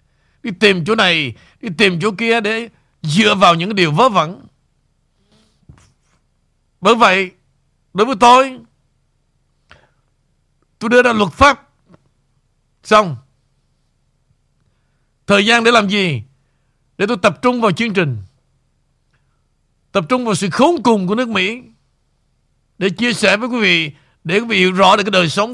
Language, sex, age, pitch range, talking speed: Vietnamese, male, 60-79, 145-225 Hz, 145 wpm